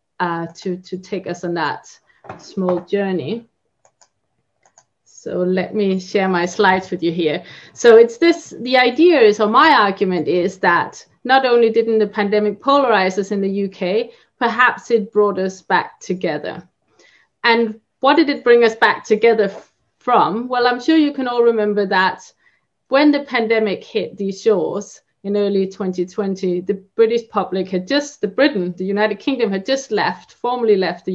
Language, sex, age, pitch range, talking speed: English, female, 30-49, 185-240 Hz, 170 wpm